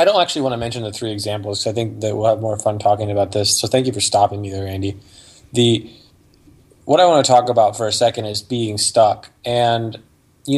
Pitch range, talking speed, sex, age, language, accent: 105-125 Hz, 245 wpm, male, 20-39, English, American